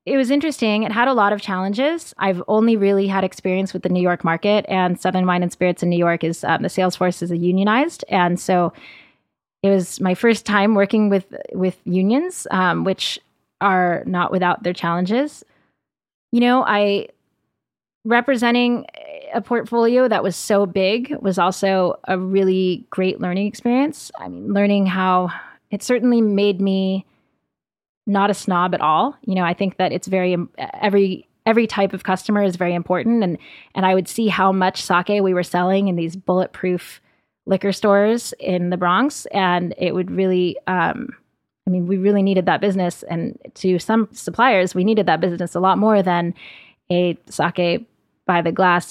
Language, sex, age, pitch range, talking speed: English, female, 20-39, 180-215 Hz, 180 wpm